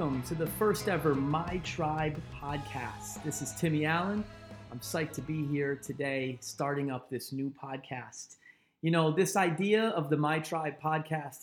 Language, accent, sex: English, American, male